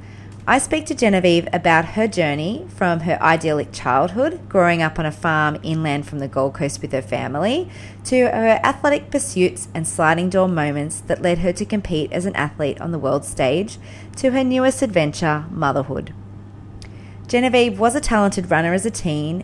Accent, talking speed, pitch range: Australian, 175 wpm, 145-190 Hz